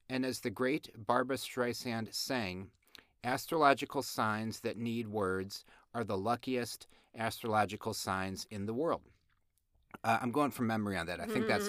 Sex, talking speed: male, 155 wpm